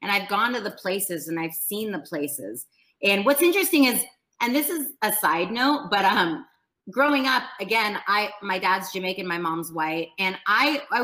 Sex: female